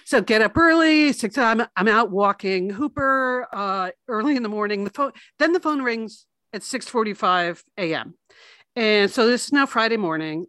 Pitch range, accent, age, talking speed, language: 210-285 Hz, American, 50-69, 175 wpm, English